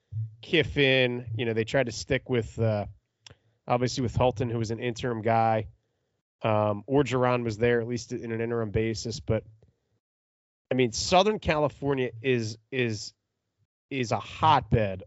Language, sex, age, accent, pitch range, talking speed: English, male, 30-49, American, 110-135 Hz, 145 wpm